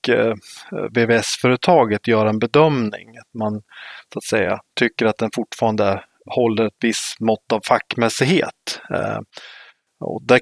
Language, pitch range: Swedish, 110-130 Hz